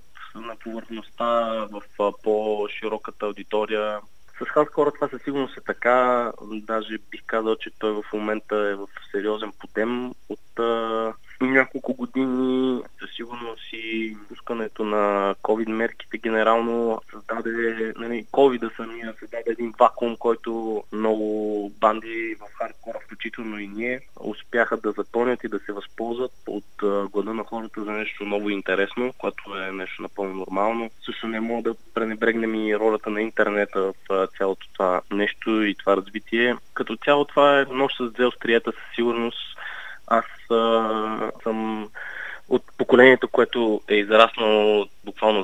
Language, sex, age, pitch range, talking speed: Bulgarian, male, 20-39, 105-115 Hz, 145 wpm